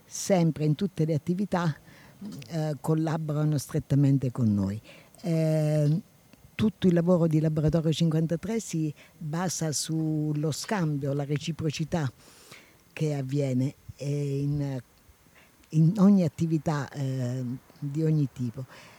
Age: 50-69